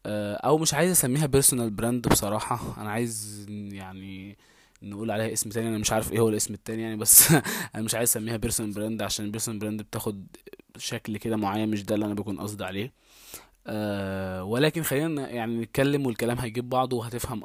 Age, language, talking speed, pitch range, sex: 20-39, Arabic, 180 wpm, 105-125 Hz, male